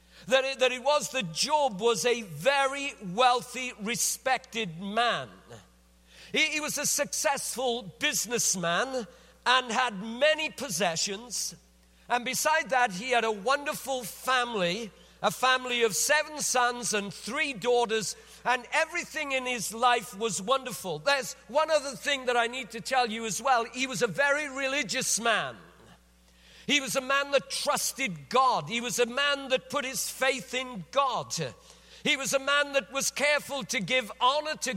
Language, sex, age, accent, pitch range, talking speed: English, male, 50-69, British, 225-275 Hz, 155 wpm